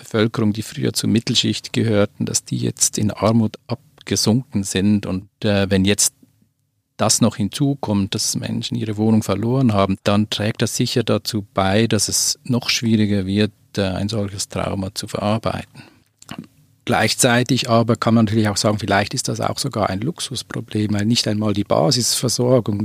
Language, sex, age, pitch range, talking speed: German, male, 40-59, 100-120 Hz, 165 wpm